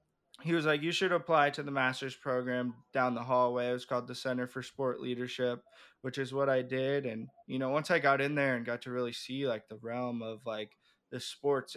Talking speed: 235 wpm